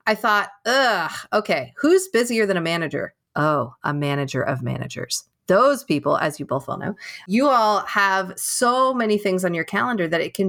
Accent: American